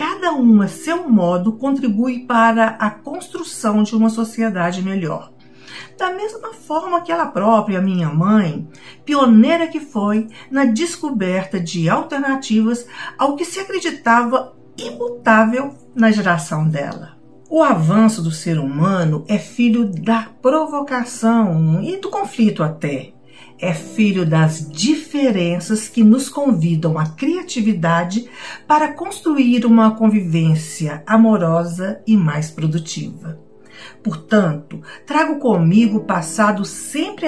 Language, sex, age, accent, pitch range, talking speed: Portuguese, female, 50-69, Brazilian, 180-270 Hz, 115 wpm